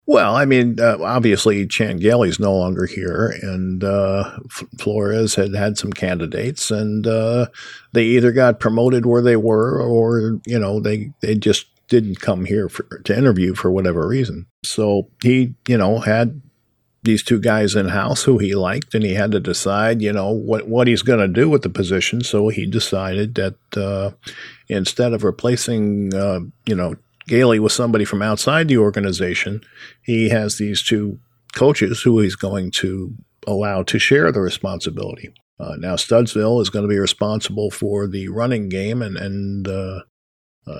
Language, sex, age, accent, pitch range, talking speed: English, male, 50-69, American, 100-115 Hz, 170 wpm